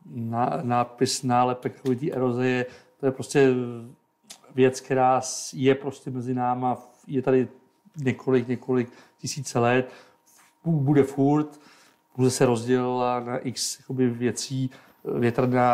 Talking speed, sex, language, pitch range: 120 wpm, male, Czech, 120-135 Hz